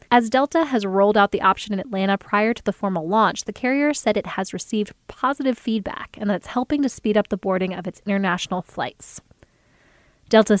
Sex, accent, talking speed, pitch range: female, American, 205 wpm, 195-230 Hz